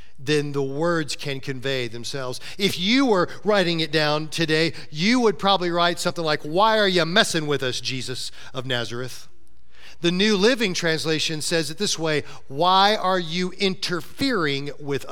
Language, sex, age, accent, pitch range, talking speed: English, male, 40-59, American, 155-215 Hz, 165 wpm